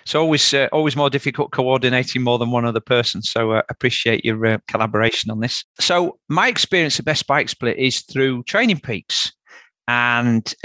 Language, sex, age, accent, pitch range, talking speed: English, male, 40-59, British, 115-140 Hz, 185 wpm